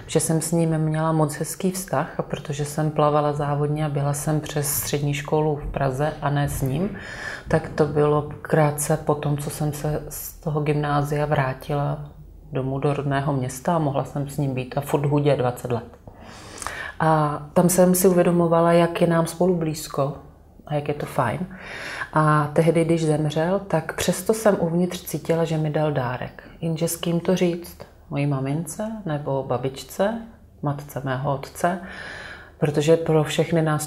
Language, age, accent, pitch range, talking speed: Czech, 30-49, native, 145-170 Hz, 170 wpm